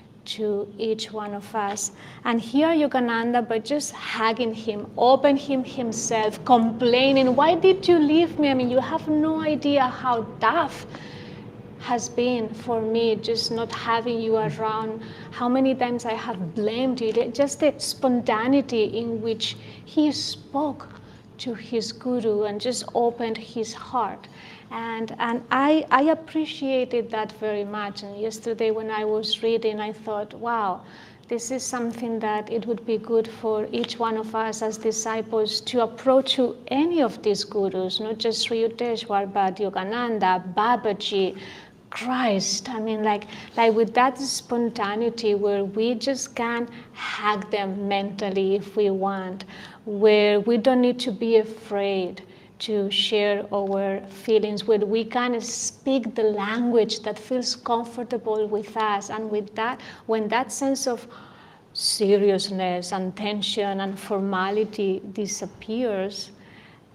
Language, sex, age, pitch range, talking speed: English, female, 30-49, 210-245 Hz, 145 wpm